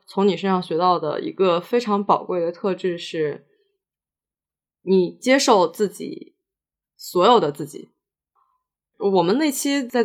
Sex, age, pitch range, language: female, 20-39, 180-235 Hz, Chinese